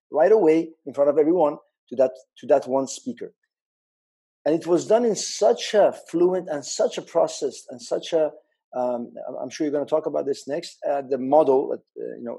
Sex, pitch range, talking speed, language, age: male, 125-180 Hz, 210 wpm, English, 50-69